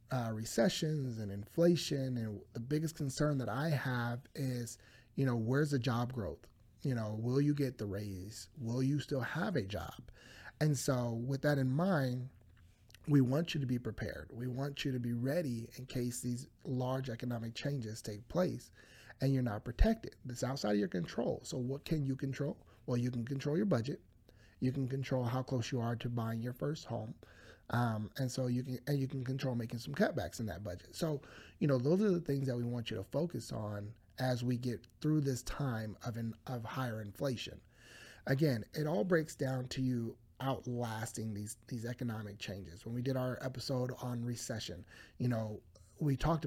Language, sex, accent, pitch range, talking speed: English, male, American, 115-135 Hz, 195 wpm